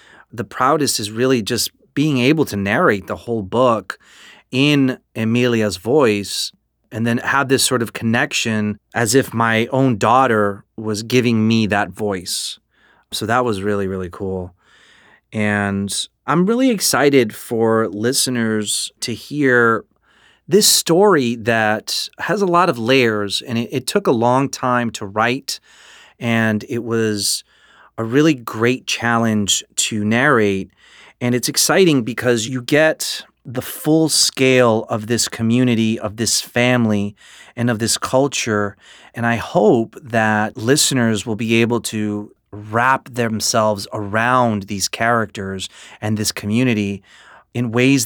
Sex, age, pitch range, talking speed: male, 30-49, 105-125 Hz, 135 wpm